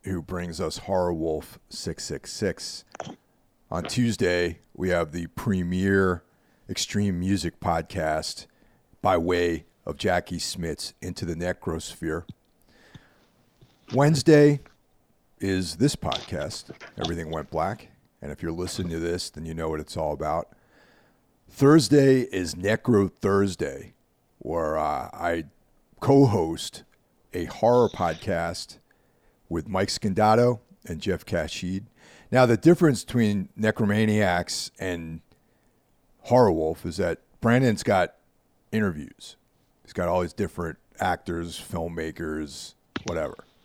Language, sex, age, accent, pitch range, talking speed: English, male, 40-59, American, 85-110 Hz, 115 wpm